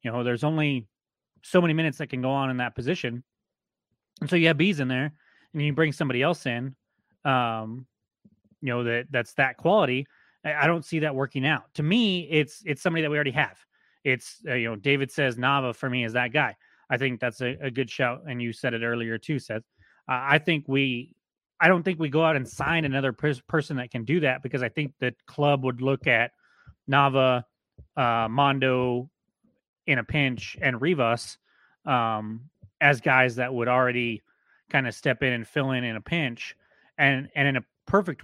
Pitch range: 120-150 Hz